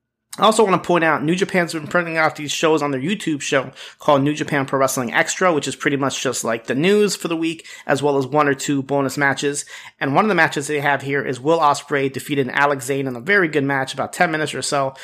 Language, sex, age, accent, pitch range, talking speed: English, male, 30-49, American, 135-160 Hz, 265 wpm